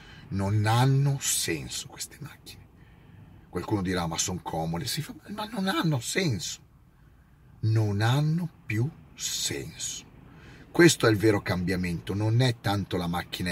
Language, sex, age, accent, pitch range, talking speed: Italian, male, 40-59, native, 95-130 Hz, 135 wpm